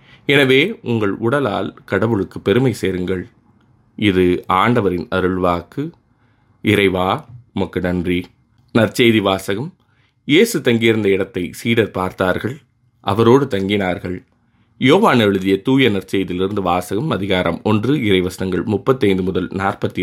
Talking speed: 100 wpm